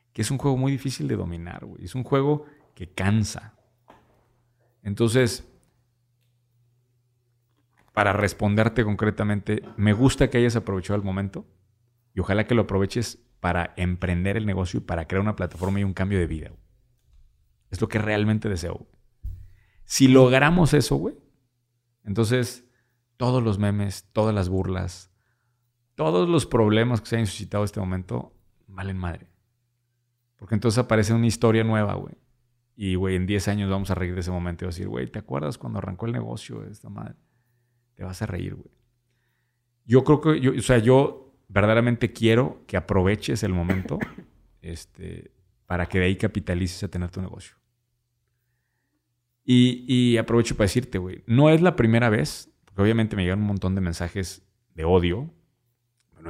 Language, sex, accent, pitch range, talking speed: Spanish, male, Mexican, 95-120 Hz, 165 wpm